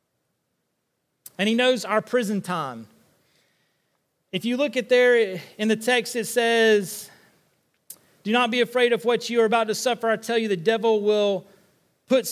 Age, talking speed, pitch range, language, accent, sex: 30-49, 165 wpm, 180-230 Hz, English, American, male